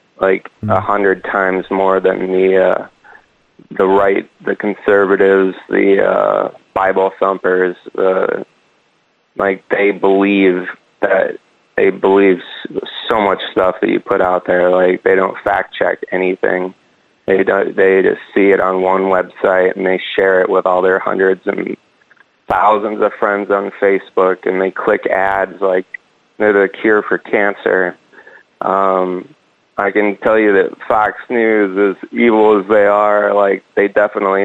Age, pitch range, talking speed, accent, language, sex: 30-49, 95-100 Hz, 150 wpm, American, English, male